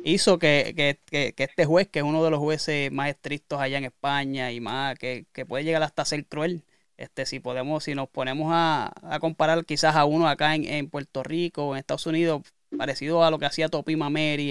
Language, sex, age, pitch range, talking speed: Spanish, male, 20-39, 135-165 Hz, 230 wpm